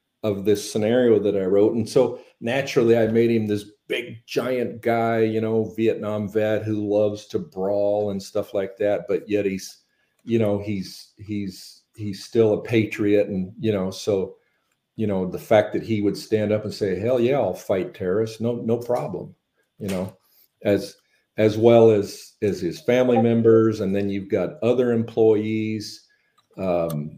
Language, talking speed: English, 175 wpm